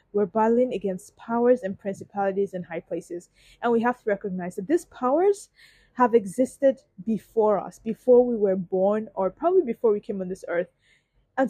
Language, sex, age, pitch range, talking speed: English, female, 20-39, 185-235 Hz, 175 wpm